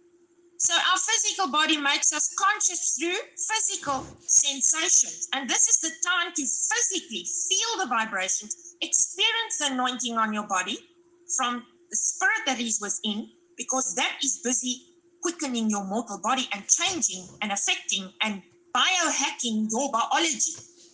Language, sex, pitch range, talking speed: English, female, 265-360 Hz, 140 wpm